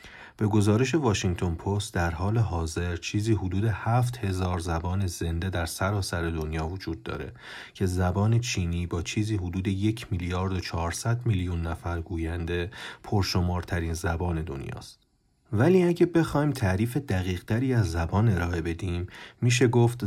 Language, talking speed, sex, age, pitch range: Persian, 135 wpm, male, 40-59, 90-110 Hz